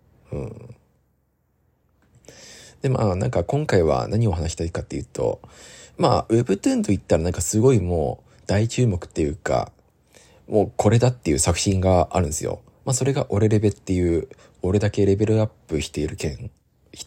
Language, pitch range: Japanese, 85-115 Hz